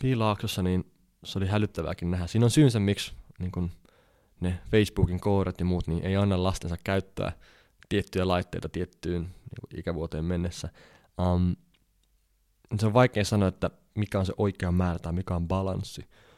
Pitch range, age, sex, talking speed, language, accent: 85-105 Hz, 20-39, male, 160 wpm, Finnish, native